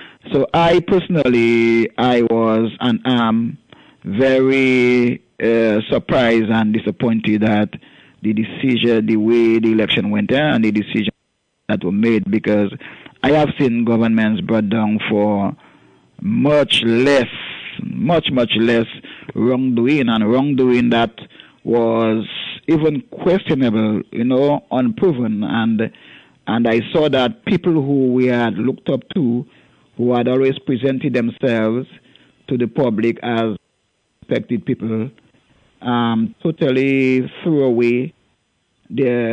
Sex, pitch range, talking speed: male, 115-130 Hz, 115 wpm